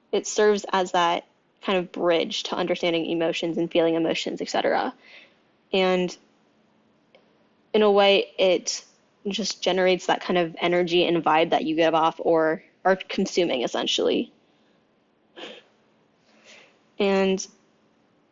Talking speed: 120 wpm